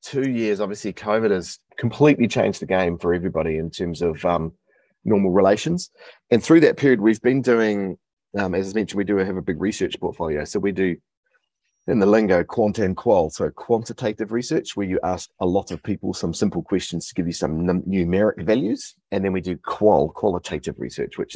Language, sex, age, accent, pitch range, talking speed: English, male, 30-49, Australian, 90-110 Hz, 200 wpm